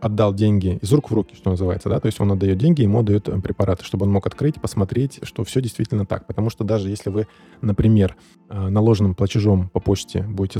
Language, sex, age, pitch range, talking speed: Russian, male, 20-39, 95-120 Hz, 210 wpm